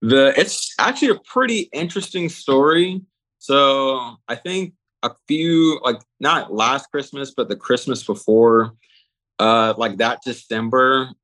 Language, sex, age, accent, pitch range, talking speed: English, male, 20-39, American, 110-140 Hz, 130 wpm